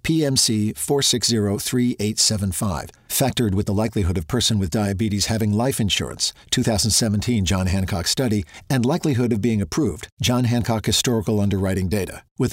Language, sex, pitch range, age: English, male, 105-125 Hz, 50-69